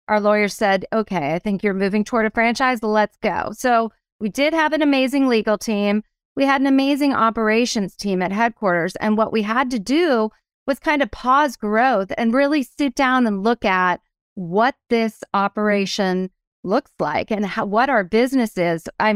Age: 30-49